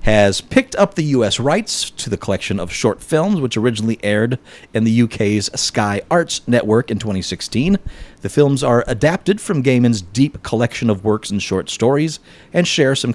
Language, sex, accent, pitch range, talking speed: English, male, American, 105-160 Hz, 180 wpm